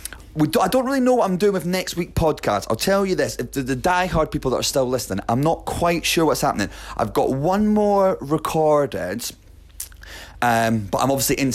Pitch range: 110-145 Hz